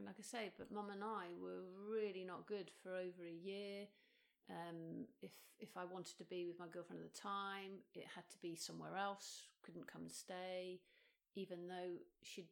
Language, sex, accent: English, female, British